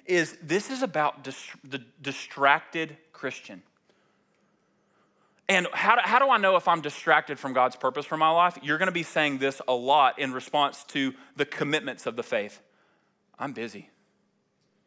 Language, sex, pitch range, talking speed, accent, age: English, male, 140-205 Hz, 165 wpm, American, 30-49